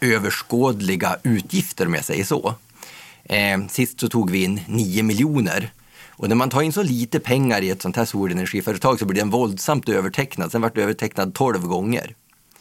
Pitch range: 100-125 Hz